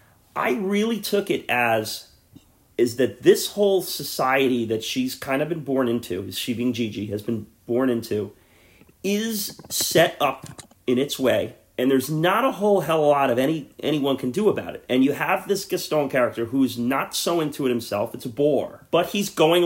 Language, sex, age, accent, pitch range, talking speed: English, male, 30-49, American, 120-170 Hz, 190 wpm